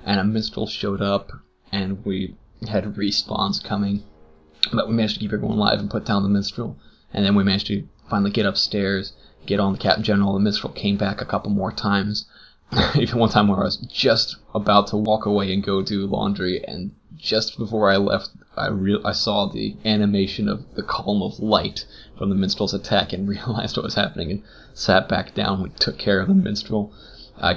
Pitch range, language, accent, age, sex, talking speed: 100-105 Hz, English, American, 20-39, male, 200 wpm